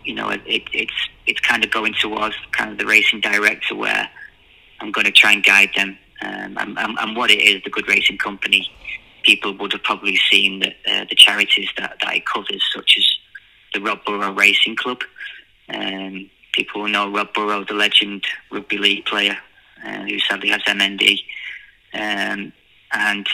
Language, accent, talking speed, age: English, British, 175 wpm, 20-39